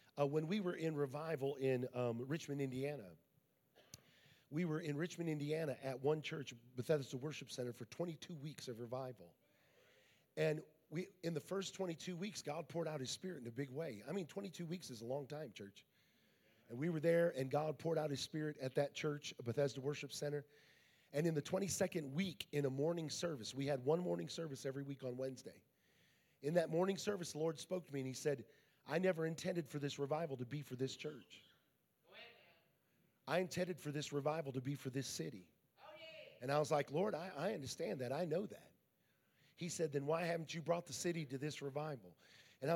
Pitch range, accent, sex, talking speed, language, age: 135-170 Hz, American, male, 200 wpm, English, 40-59